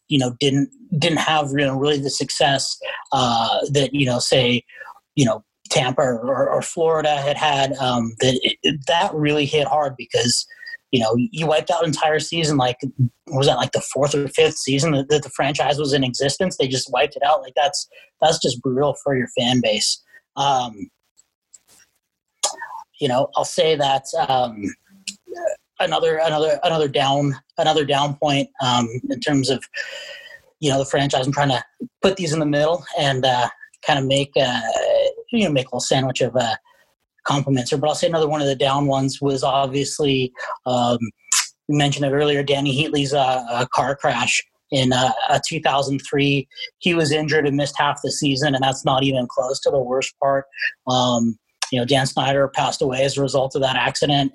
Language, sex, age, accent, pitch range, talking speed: English, male, 30-49, American, 130-155 Hz, 185 wpm